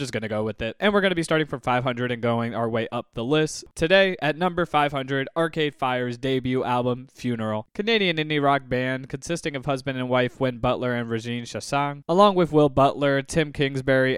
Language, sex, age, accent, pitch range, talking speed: English, male, 20-39, American, 120-150 Hz, 205 wpm